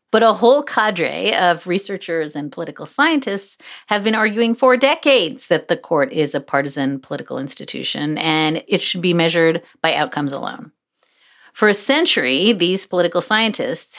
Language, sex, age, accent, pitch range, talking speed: English, female, 40-59, American, 165-230 Hz, 155 wpm